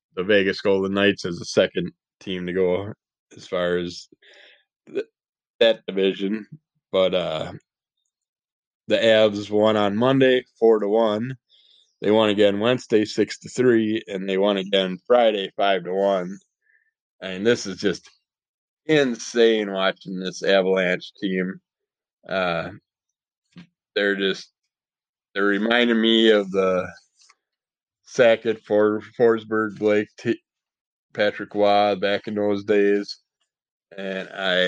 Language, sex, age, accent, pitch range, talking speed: English, male, 20-39, American, 95-110 Hz, 125 wpm